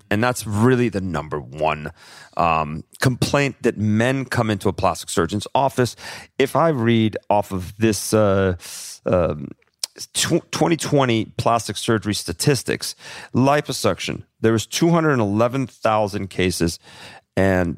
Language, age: English, 40-59